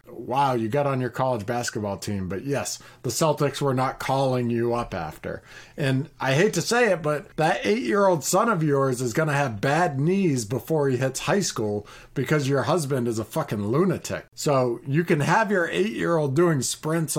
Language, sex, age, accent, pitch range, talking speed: English, male, 40-59, American, 125-170 Hz, 190 wpm